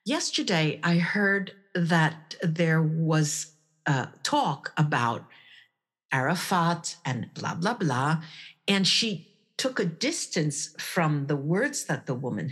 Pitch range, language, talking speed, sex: 150-200 Hz, English, 120 wpm, female